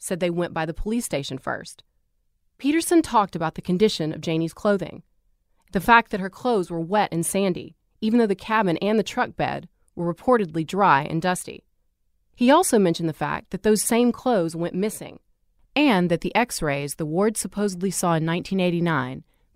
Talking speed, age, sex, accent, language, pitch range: 180 wpm, 30-49, female, American, English, 160-220 Hz